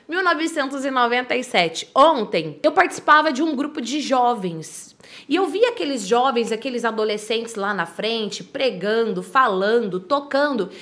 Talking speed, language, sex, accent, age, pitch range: 120 wpm, Portuguese, female, Brazilian, 20-39, 210-310 Hz